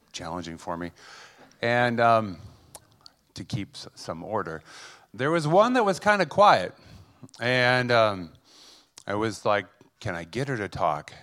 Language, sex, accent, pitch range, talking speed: English, male, American, 105-135 Hz, 150 wpm